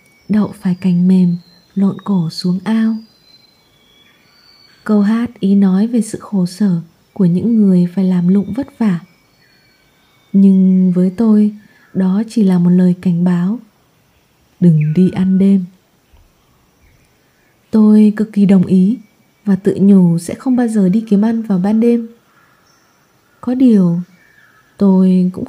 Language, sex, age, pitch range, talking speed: Vietnamese, female, 20-39, 185-225 Hz, 140 wpm